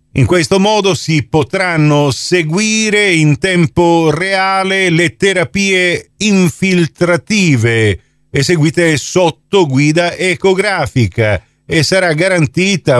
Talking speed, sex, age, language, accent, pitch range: 90 wpm, male, 50-69, Italian, native, 130-180 Hz